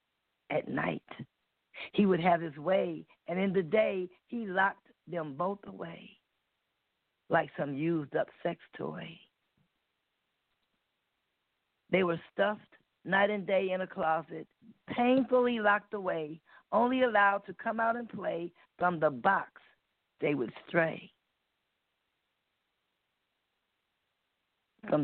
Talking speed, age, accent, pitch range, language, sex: 115 wpm, 50-69, American, 170-220 Hz, English, female